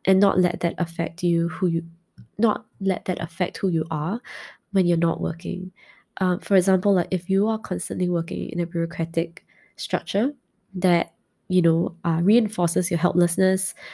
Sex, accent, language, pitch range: female, Malaysian, English, 170-205 Hz